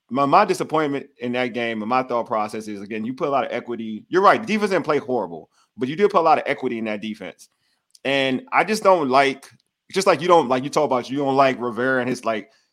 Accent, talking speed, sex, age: American, 270 wpm, male, 30-49